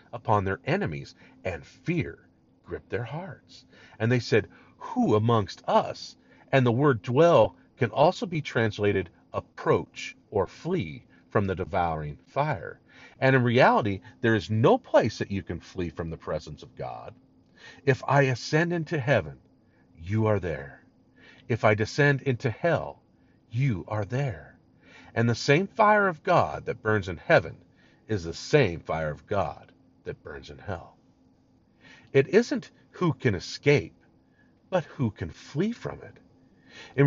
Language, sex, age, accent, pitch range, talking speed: English, male, 50-69, American, 105-150 Hz, 150 wpm